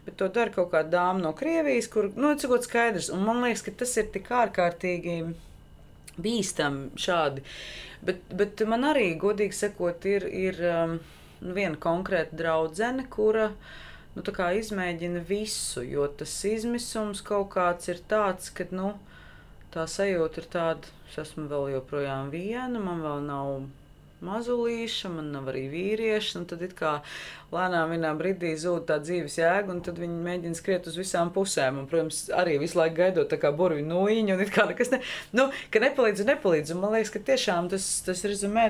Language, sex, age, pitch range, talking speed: English, female, 20-39, 160-210 Hz, 170 wpm